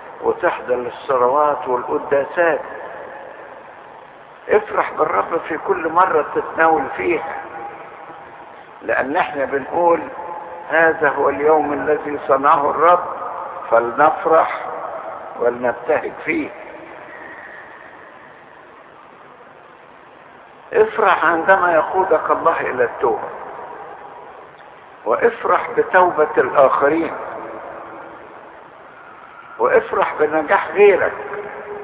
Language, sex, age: Arabic, male, 60-79